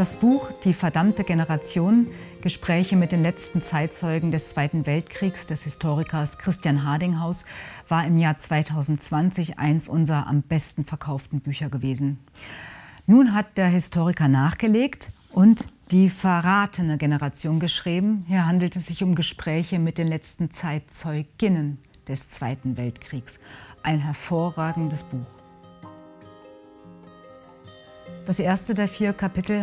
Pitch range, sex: 150-185 Hz, female